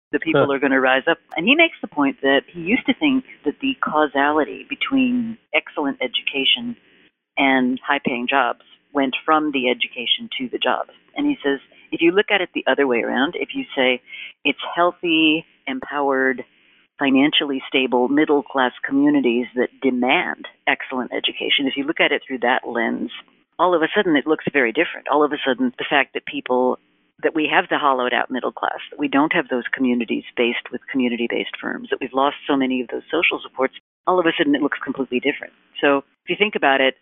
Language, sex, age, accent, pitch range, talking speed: English, female, 50-69, American, 130-215 Hz, 200 wpm